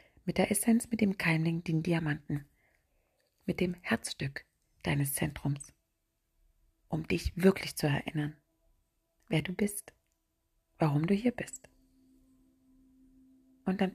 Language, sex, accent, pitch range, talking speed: German, female, German, 155-255 Hz, 115 wpm